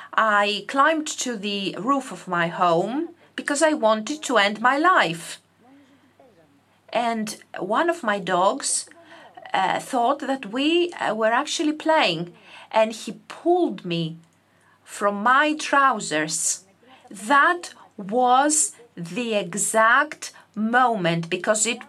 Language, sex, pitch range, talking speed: Greek, female, 200-280 Hz, 110 wpm